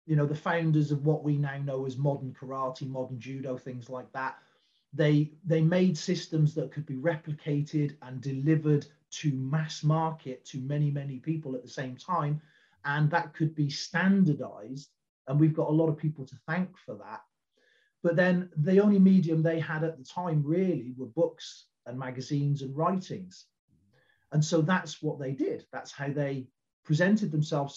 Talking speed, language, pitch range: 175 wpm, English, 140-170 Hz